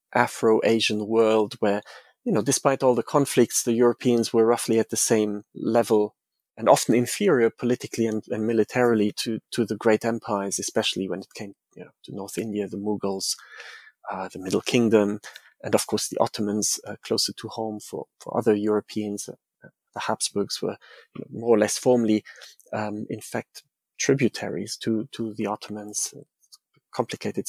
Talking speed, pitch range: 170 wpm, 110-125 Hz